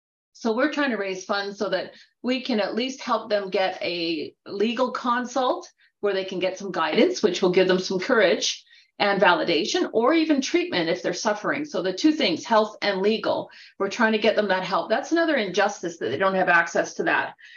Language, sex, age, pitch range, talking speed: English, female, 40-59, 195-255 Hz, 210 wpm